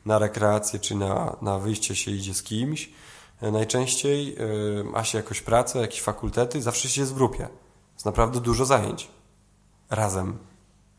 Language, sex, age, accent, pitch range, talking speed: Polish, male, 20-39, native, 100-125 Hz, 145 wpm